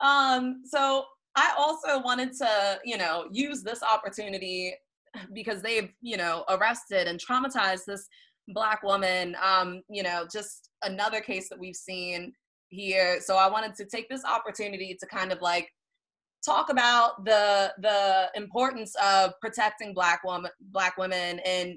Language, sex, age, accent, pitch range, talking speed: English, female, 20-39, American, 180-215 Hz, 150 wpm